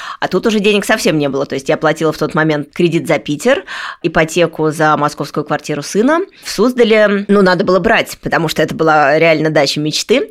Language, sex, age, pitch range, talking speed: Russian, female, 20-39, 155-200 Hz, 205 wpm